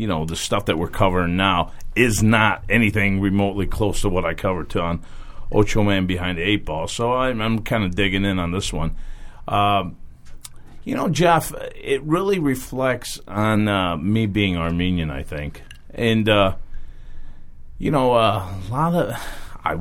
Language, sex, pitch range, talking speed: English, male, 95-125 Hz, 175 wpm